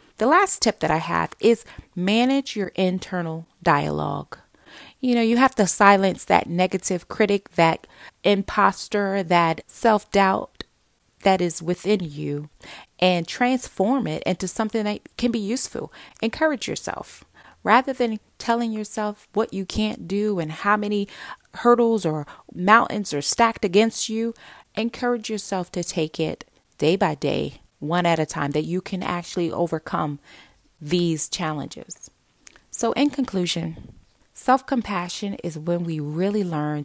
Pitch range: 165-225 Hz